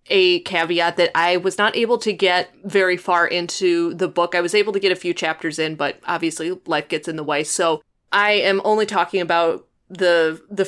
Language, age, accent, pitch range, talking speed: English, 20-39, American, 170-205 Hz, 215 wpm